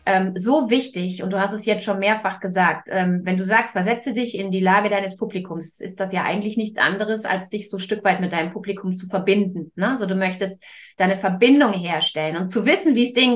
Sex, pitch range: female, 190-240 Hz